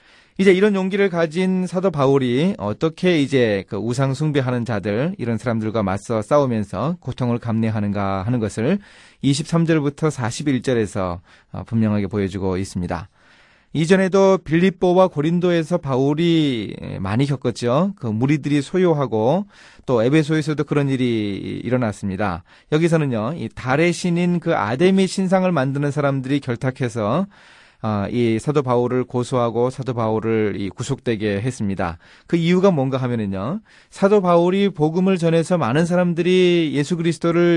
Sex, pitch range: male, 115-175 Hz